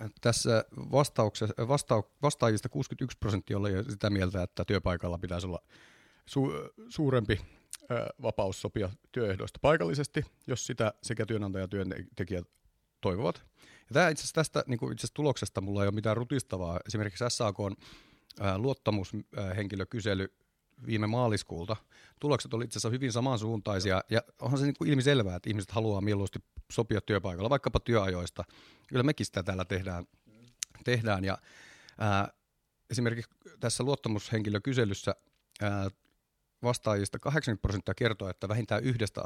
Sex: male